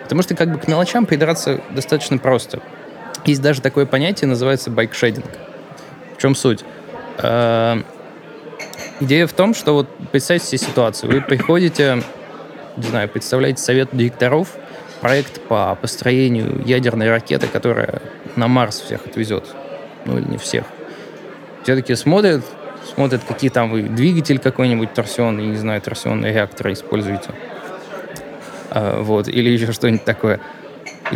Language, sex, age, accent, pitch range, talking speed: Russian, male, 20-39, native, 120-150 Hz, 130 wpm